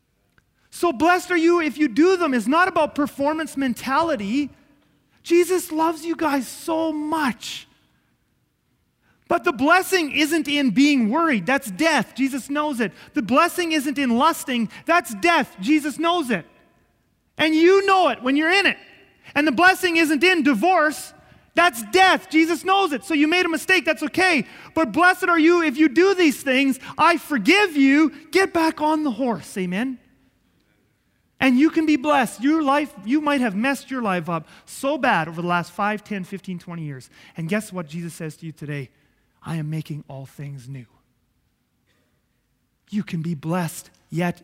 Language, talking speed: English, 175 wpm